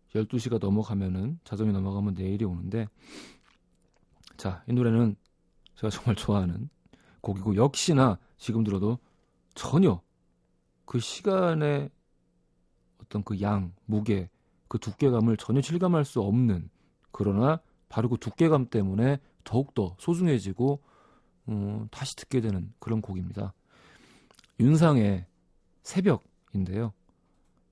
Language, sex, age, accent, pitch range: Korean, male, 40-59, native, 100-135 Hz